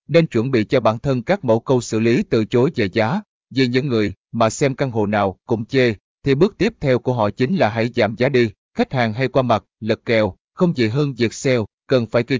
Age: 20-39